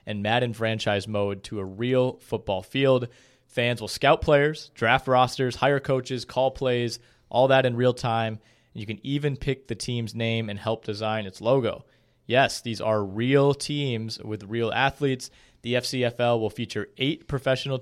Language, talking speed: English, 170 wpm